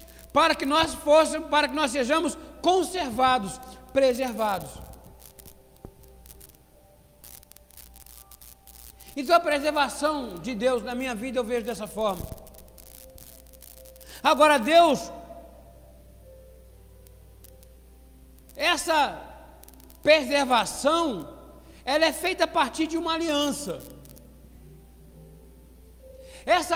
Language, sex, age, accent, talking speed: Portuguese, male, 60-79, Brazilian, 80 wpm